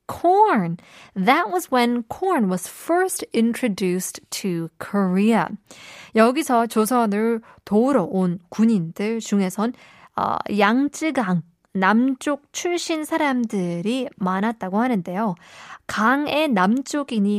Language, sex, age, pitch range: Korean, female, 20-39, 190-245 Hz